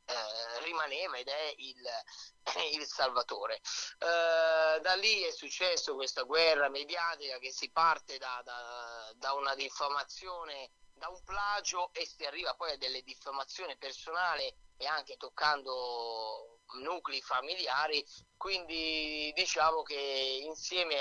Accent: native